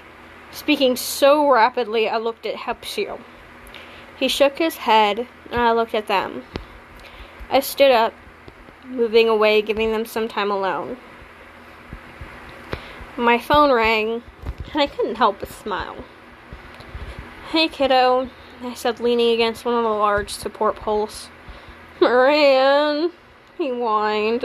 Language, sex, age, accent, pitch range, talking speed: English, female, 10-29, American, 215-275 Hz, 125 wpm